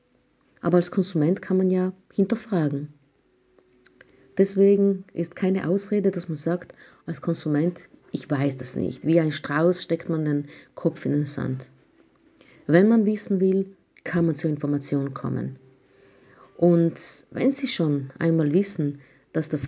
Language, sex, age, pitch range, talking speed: German, female, 50-69, 140-190 Hz, 145 wpm